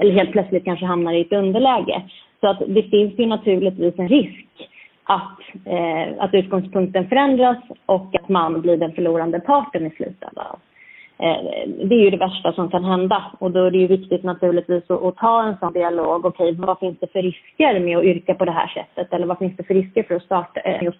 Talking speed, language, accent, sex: 215 wpm, Swedish, native, female